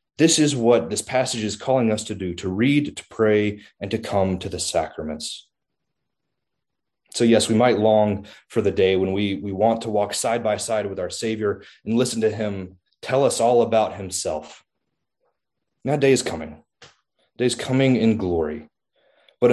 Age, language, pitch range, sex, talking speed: 30-49, English, 95-115 Hz, male, 180 wpm